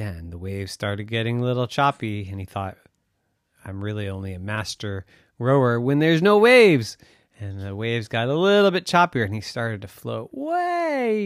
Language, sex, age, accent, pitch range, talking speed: English, male, 30-49, American, 105-170 Hz, 185 wpm